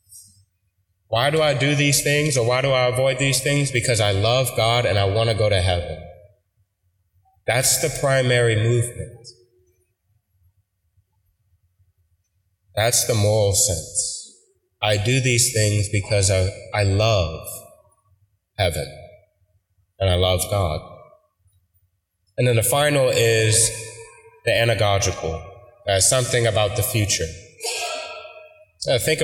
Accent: American